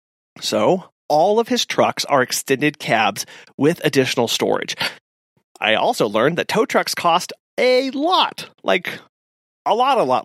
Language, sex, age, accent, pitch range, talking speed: English, male, 30-49, American, 130-200 Hz, 145 wpm